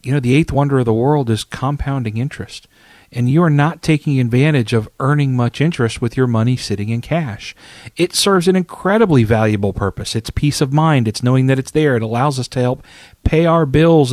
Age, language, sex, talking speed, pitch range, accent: 40-59, English, male, 210 wpm, 120-150 Hz, American